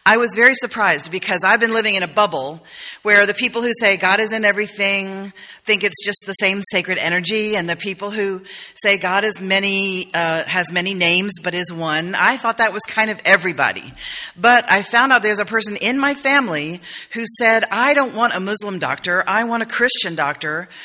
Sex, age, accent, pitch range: female, 40-59, American, 170-220 Hz